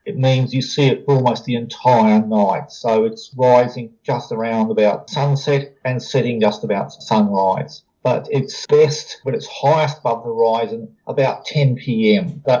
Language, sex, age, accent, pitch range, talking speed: English, male, 40-59, Australian, 115-145 Hz, 165 wpm